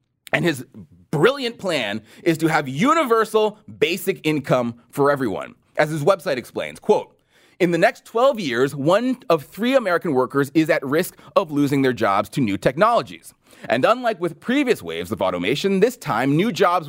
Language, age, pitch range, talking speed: English, 30-49, 170-250 Hz, 170 wpm